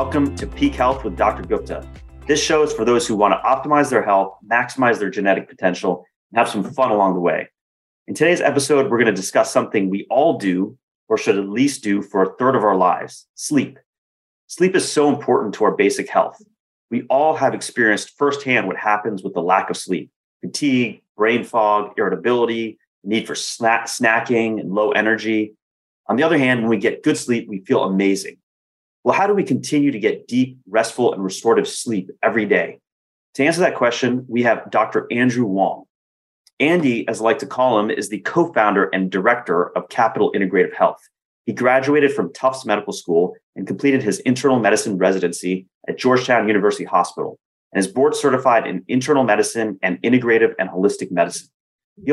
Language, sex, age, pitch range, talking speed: English, male, 30-49, 95-130 Hz, 185 wpm